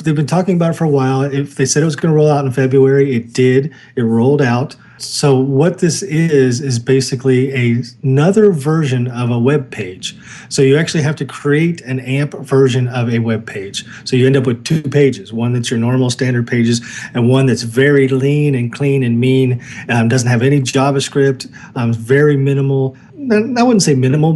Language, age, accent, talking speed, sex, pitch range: English, 40-59, American, 205 wpm, male, 120-145 Hz